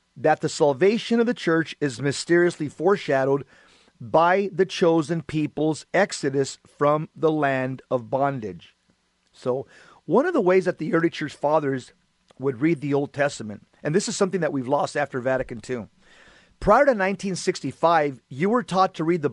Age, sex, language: 40-59, male, English